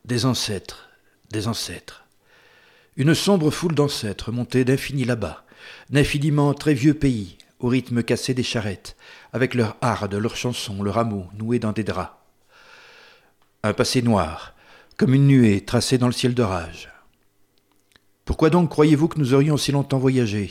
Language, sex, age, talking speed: French, male, 50-69, 150 wpm